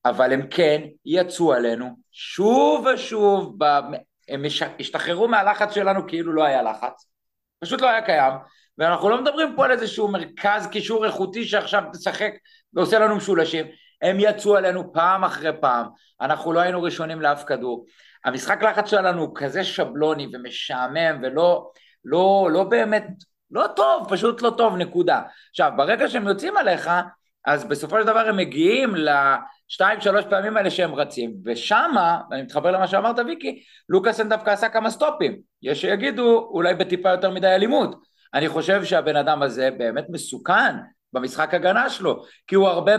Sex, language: male, Hebrew